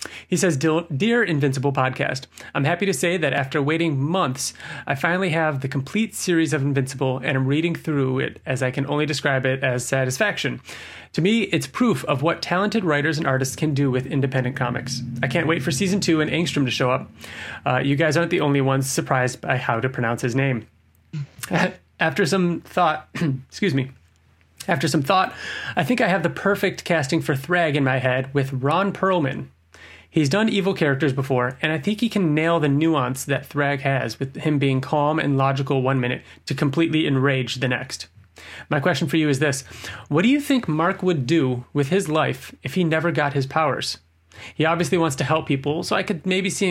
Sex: male